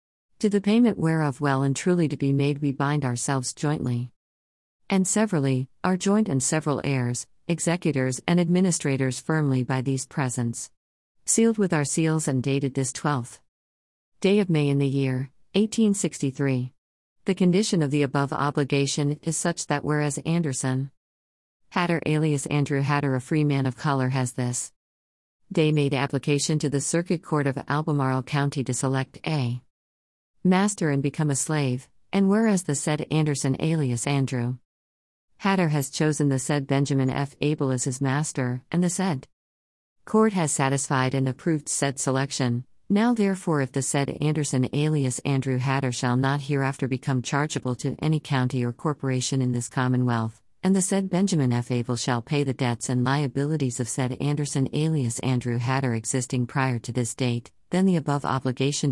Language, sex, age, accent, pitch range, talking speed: English, female, 50-69, American, 130-155 Hz, 165 wpm